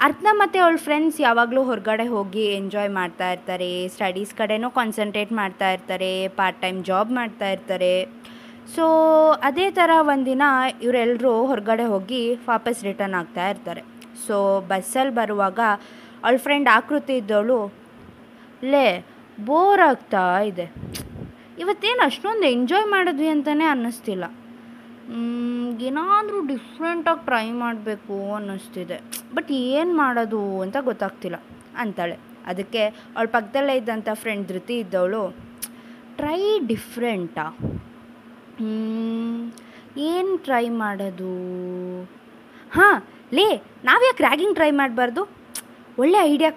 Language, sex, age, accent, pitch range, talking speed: Kannada, female, 20-39, native, 205-275 Hz, 100 wpm